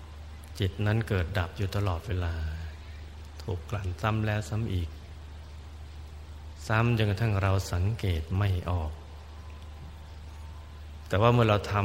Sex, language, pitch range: male, Thai, 80-100 Hz